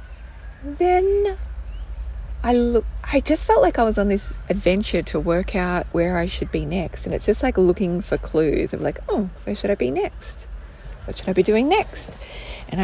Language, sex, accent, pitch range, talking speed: English, female, Australian, 145-235 Hz, 195 wpm